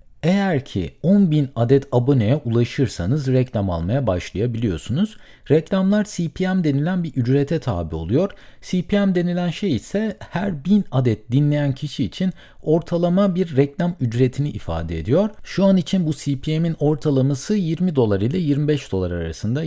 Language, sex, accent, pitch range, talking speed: Turkish, male, native, 115-165 Hz, 135 wpm